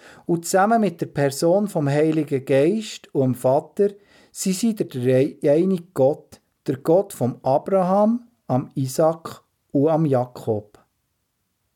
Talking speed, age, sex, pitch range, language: 130 wpm, 50-69, male, 135-195 Hz, German